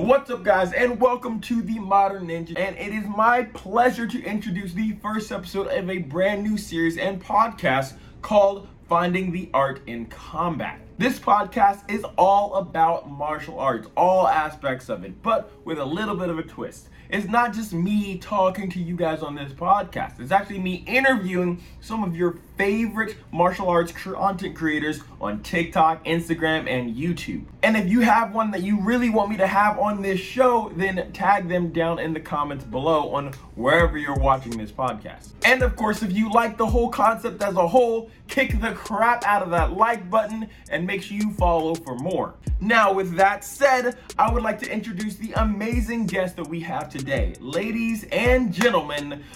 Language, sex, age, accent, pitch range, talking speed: English, male, 20-39, American, 170-220 Hz, 190 wpm